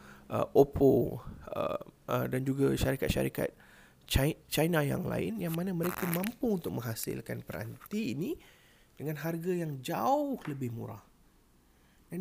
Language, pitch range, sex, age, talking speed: Malay, 115-170 Hz, male, 30-49, 125 wpm